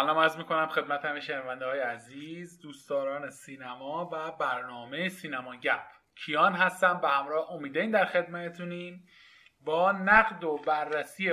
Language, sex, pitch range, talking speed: Persian, male, 150-195 Hz, 130 wpm